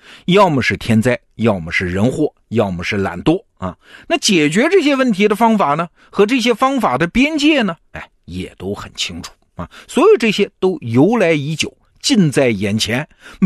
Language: Chinese